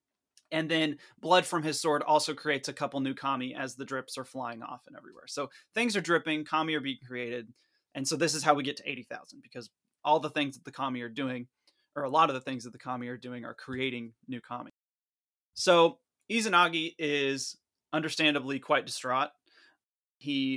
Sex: male